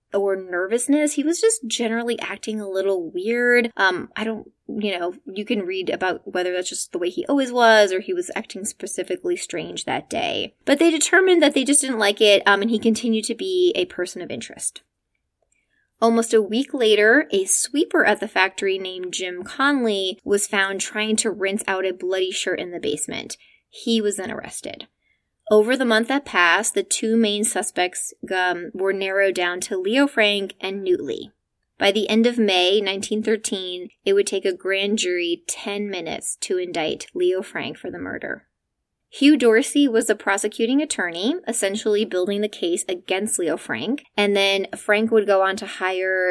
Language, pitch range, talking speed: English, 190-245 Hz, 185 wpm